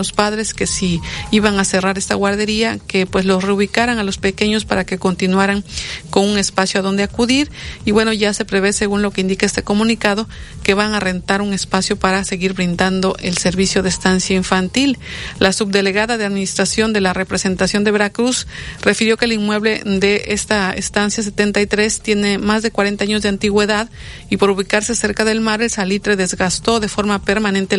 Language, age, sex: Spanish, 40-59, female